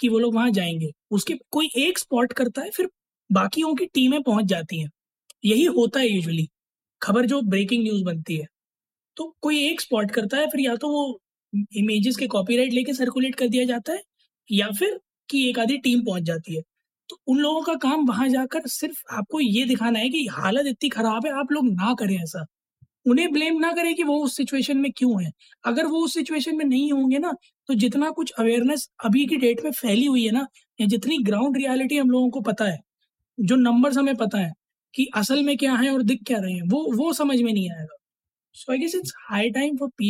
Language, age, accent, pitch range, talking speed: Hindi, 20-39, native, 220-285 Hz, 200 wpm